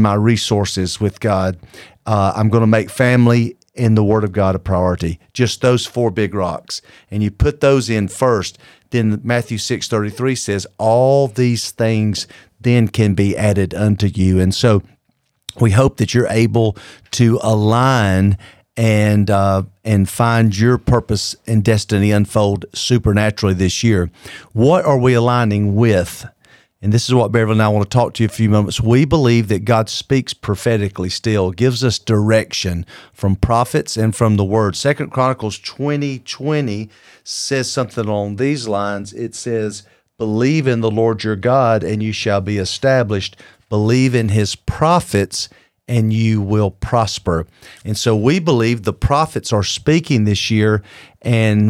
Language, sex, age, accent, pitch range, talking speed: English, male, 40-59, American, 105-120 Hz, 165 wpm